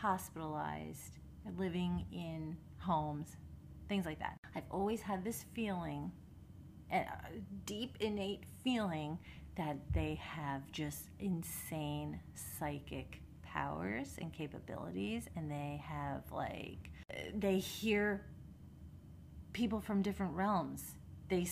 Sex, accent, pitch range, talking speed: female, American, 150-200 Hz, 100 wpm